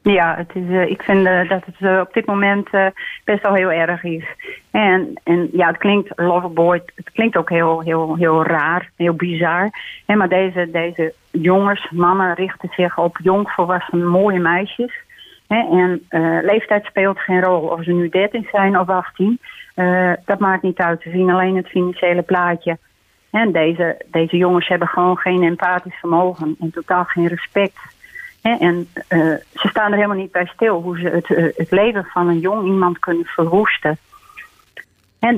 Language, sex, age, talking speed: Dutch, female, 40-59, 185 wpm